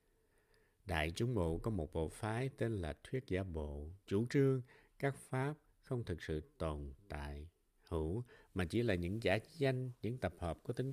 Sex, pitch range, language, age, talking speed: male, 90-125 Hz, Vietnamese, 60-79, 180 wpm